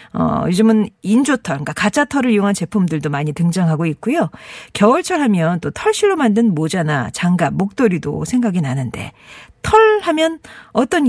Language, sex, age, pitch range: Korean, female, 40-59, 190-305 Hz